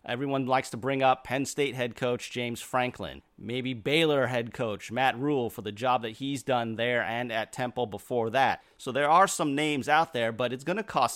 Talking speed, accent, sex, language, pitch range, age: 220 wpm, American, male, English, 115-145 Hz, 30-49